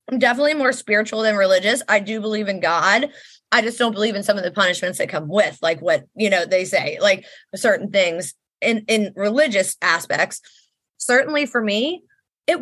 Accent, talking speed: American, 190 wpm